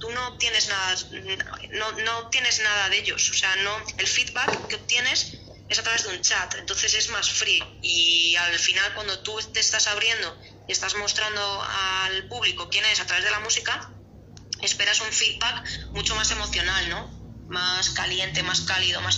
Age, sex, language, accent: 20-39, female, Spanish, Spanish